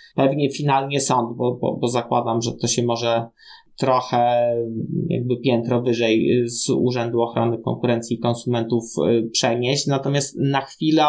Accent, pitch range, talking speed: native, 130-165 Hz, 135 wpm